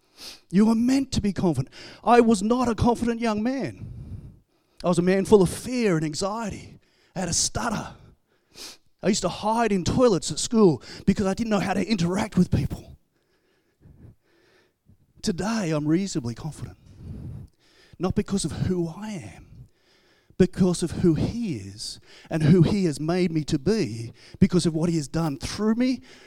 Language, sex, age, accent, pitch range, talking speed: English, male, 30-49, Australian, 170-240 Hz, 170 wpm